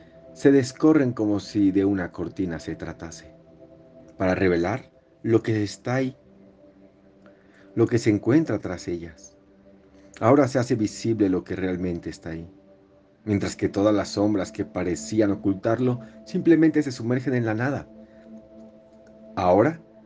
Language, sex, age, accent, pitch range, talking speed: Spanish, male, 50-69, Mexican, 95-115 Hz, 135 wpm